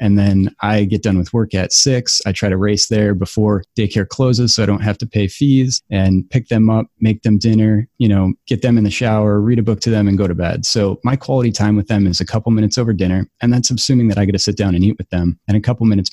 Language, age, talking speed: English, 30-49, 285 wpm